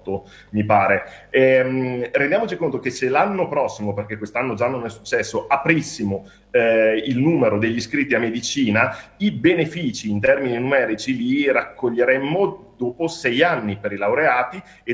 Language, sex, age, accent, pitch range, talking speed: Italian, male, 40-59, native, 110-140 Hz, 150 wpm